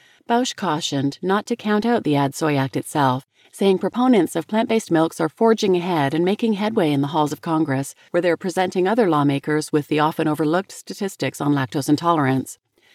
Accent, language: American, English